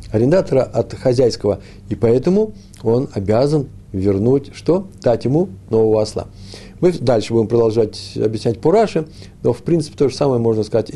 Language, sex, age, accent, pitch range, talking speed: Russian, male, 50-69, native, 100-125 Hz, 155 wpm